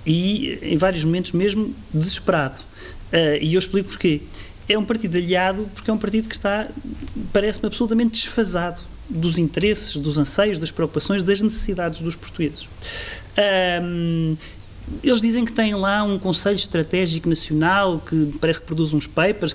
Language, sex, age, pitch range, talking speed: Portuguese, male, 30-49, 170-220 Hz, 155 wpm